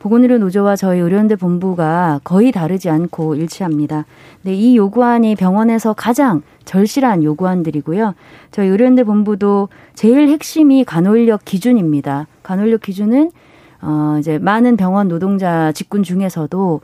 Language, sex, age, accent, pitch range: Korean, female, 30-49, native, 165-225 Hz